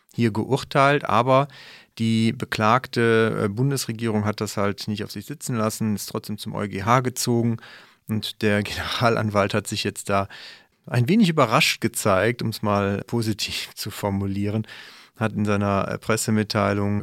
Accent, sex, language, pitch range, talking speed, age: German, male, German, 100-115 Hz, 140 wpm, 40-59